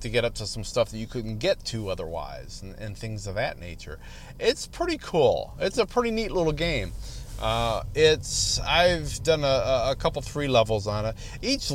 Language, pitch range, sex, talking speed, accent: English, 100-125 Hz, male, 200 wpm, American